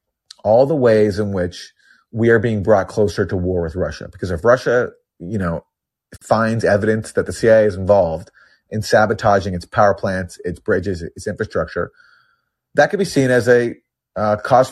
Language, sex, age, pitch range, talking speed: English, male, 30-49, 95-115 Hz, 175 wpm